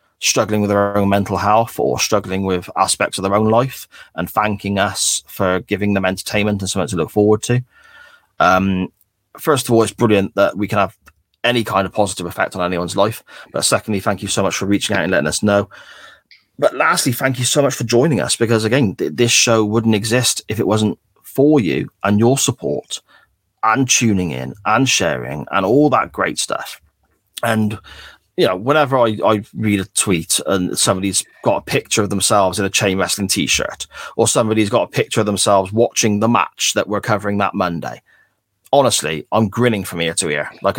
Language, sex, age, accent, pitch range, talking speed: English, male, 30-49, British, 95-110 Hz, 200 wpm